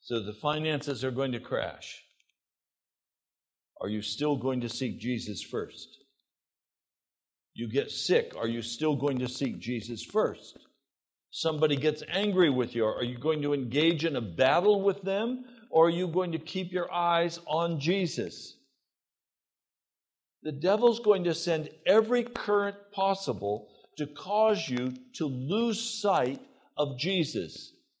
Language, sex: English, male